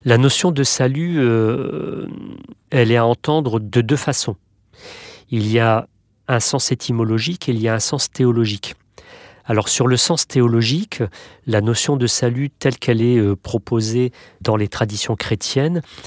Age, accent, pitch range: 40-59, French, 105-135 Hz